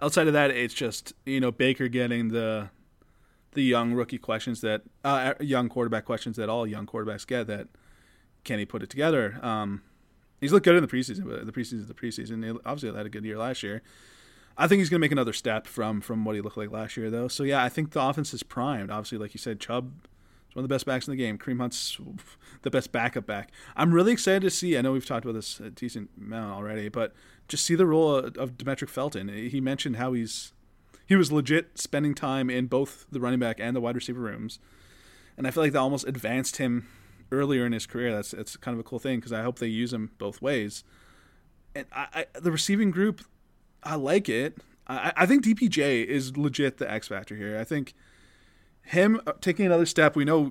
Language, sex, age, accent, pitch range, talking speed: English, male, 20-39, American, 110-140 Hz, 230 wpm